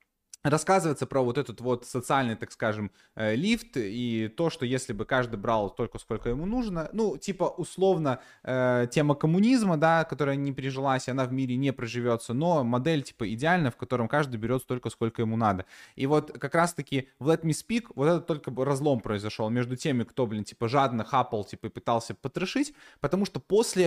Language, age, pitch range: Russian, 20-39, 115-145 Hz